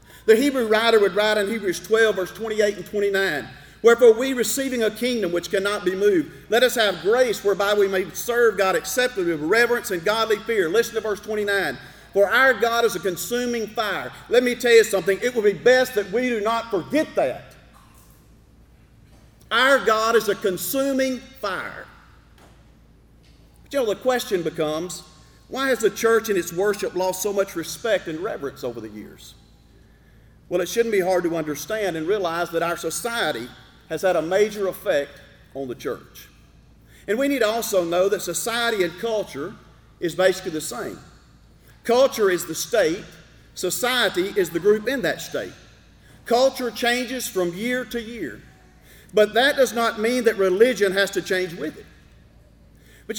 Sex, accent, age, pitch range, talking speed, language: male, American, 50-69, 185-240 Hz, 175 wpm, English